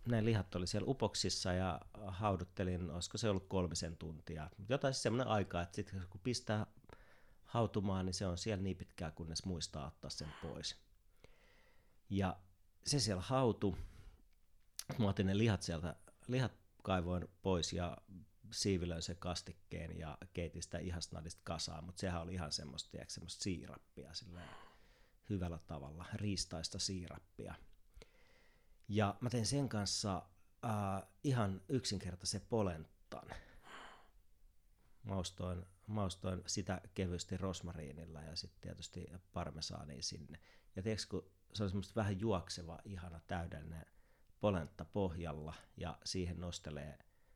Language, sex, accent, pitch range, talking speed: Finnish, male, native, 85-100 Hz, 125 wpm